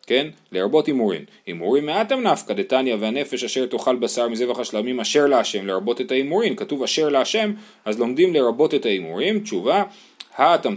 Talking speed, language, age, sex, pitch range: 160 wpm, Hebrew, 30-49, male, 115-175 Hz